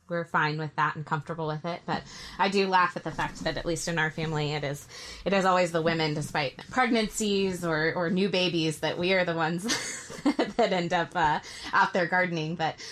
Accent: American